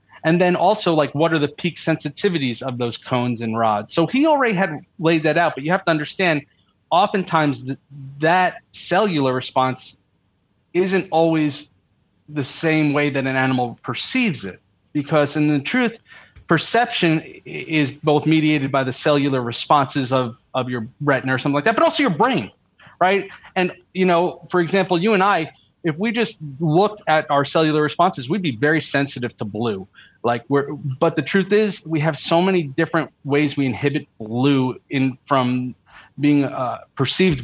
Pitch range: 130-170 Hz